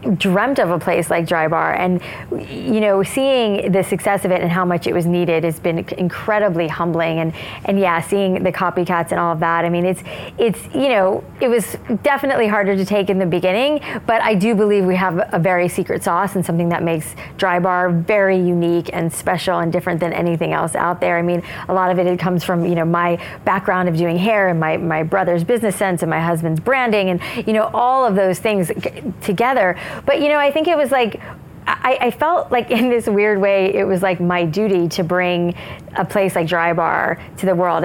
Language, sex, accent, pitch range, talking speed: English, female, American, 170-205 Hz, 225 wpm